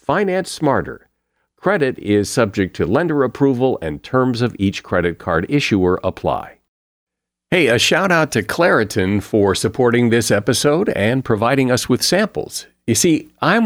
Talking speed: 145 wpm